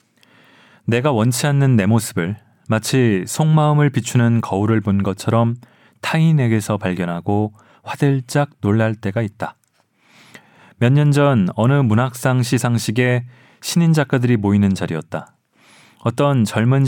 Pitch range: 105-130 Hz